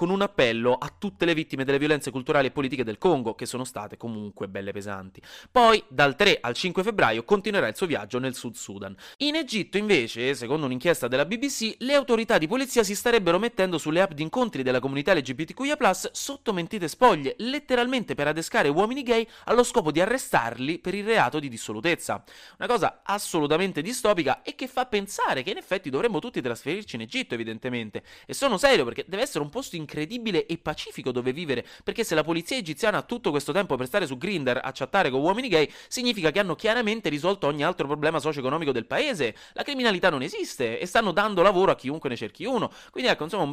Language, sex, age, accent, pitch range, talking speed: Italian, male, 30-49, native, 130-200 Hz, 205 wpm